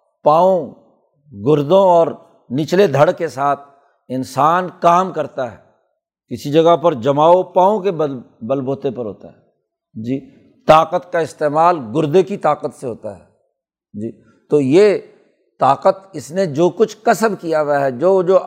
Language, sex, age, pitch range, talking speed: Urdu, male, 60-79, 145-190 Hz, 150 wpm